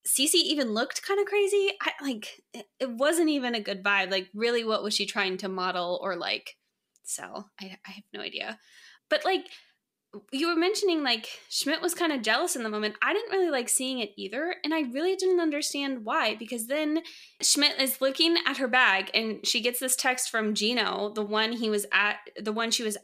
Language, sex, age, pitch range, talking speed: English, female, 20-39, 210-285 Hz, 210 wpm